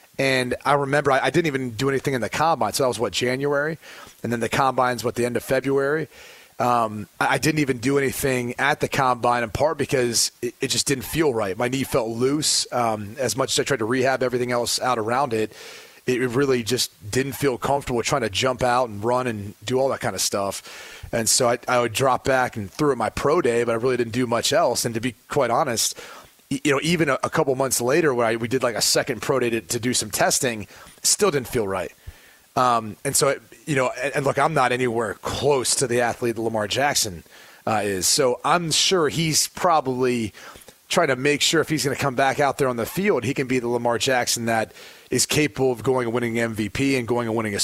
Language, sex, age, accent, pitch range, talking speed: English, male, 30-49, American, 115-135 Hz, 245 wpm